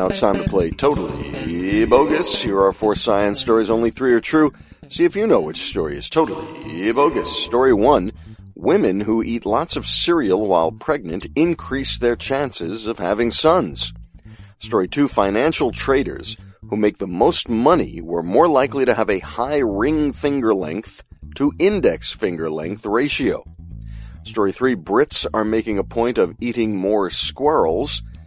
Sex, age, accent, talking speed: male, 50-69, American, 160 wpm